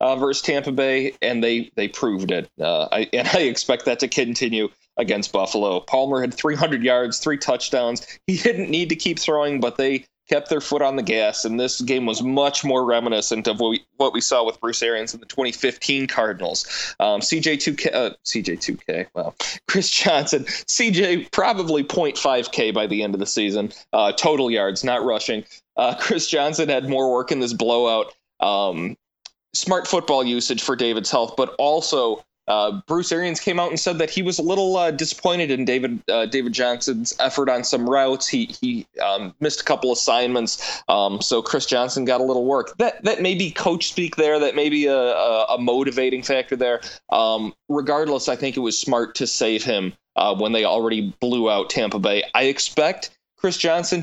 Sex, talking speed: male, 195 wpm